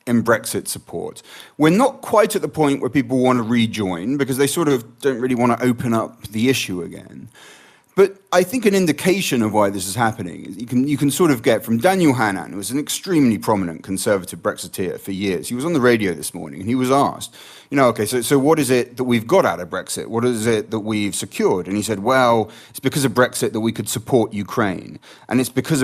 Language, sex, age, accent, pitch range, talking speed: English, male, 30-49, British, 105-140 Hz, 240 wpm